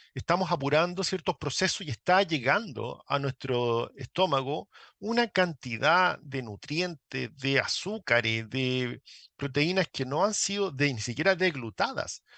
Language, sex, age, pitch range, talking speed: Spanish, male, 40-59, 125-170 Hz, 125 wpm